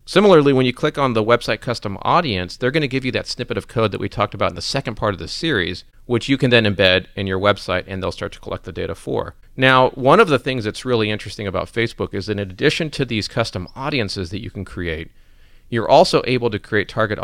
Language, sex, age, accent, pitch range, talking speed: English, male, 40-59, American, 95-120 Hz, 255 wpm